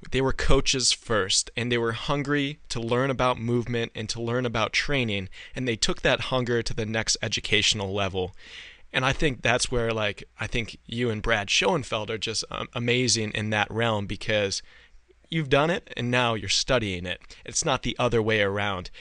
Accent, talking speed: American, 195 wpm